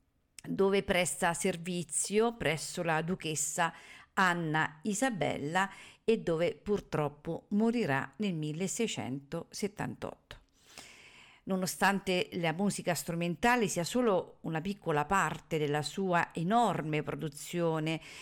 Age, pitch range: 50-69, 160-210 Hz